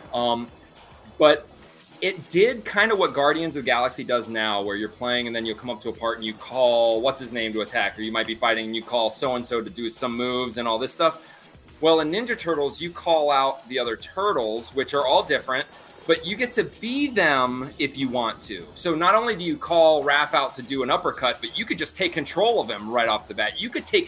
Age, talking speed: 30-49, 245 wpm